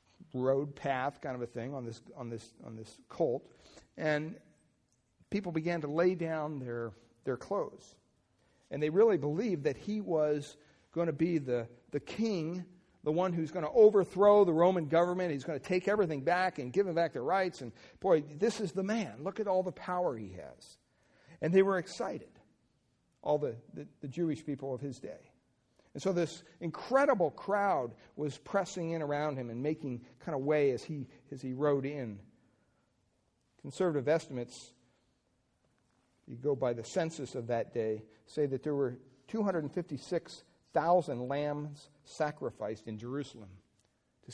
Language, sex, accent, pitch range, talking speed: English, male, American, 125-175 Hz, 165 wpm